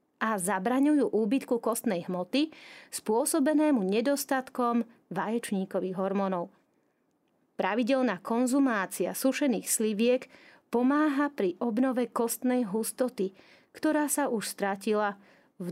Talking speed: 90 wpm